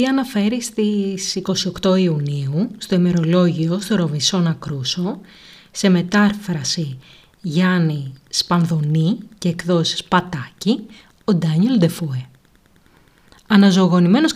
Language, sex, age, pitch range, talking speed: Greek, female, 30-49, 170-235 Hz, 80 wpm